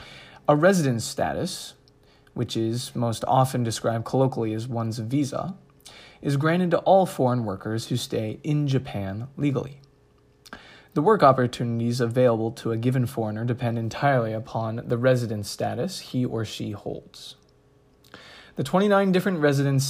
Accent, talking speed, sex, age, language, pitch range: American, 135 wpm, male, 20-39, English, 115-140 Hz